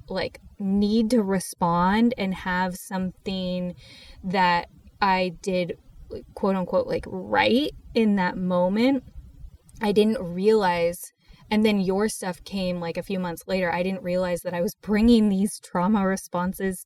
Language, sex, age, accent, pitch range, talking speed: English, female, 10-29, American, 170-195 Hz, 140 wpm